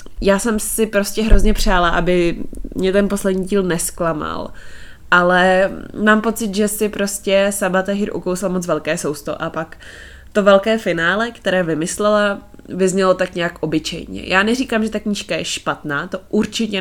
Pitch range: 165-200 Hz